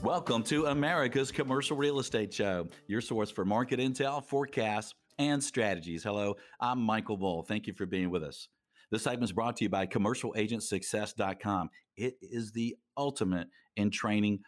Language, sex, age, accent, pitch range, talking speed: English, male, 50-69, American, 95-115 Hz, 160 wpm